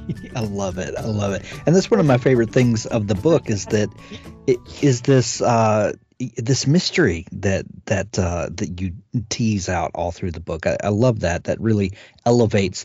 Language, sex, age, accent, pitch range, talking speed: English, male, 40-59, American, 95-120 Hz, 195 wpm